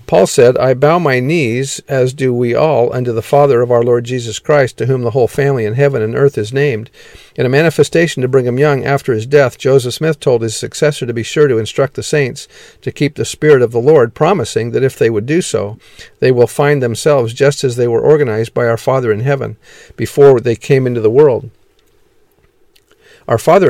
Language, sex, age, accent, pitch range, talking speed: English, male, 50-69, American, 120-145 Hz, 220 wpm